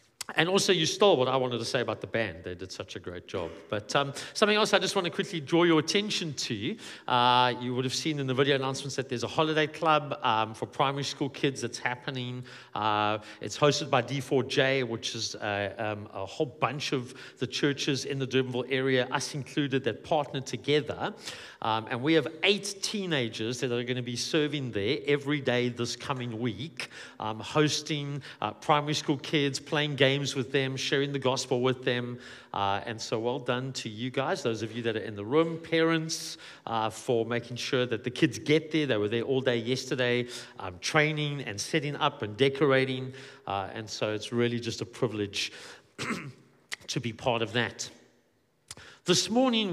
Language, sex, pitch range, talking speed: English, male, 120-150 Hz, 190 wpm